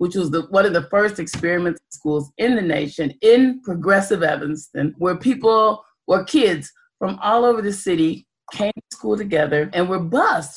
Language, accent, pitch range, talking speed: English, American, 175-235 Hz, 170 wpm